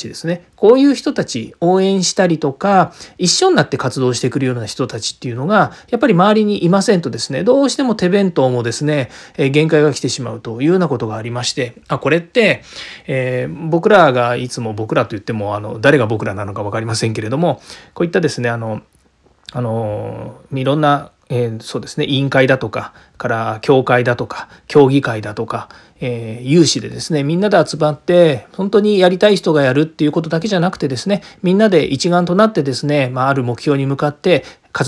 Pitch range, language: 125-175 Hz, Japanese